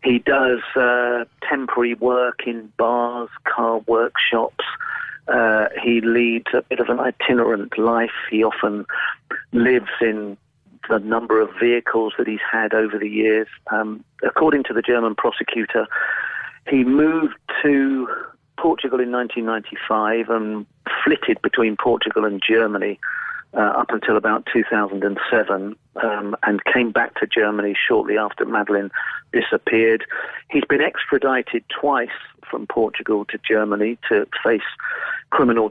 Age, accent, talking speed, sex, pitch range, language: 40-59, British, 130 wpm, male, 105-125 Hz, English